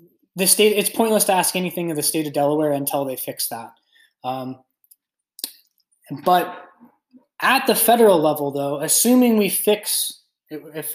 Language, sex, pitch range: English, male, 145-175 Hz